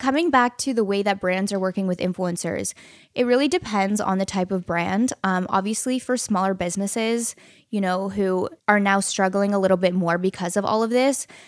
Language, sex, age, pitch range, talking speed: English, female, 10-29, 190-225 Hz, 205 wpm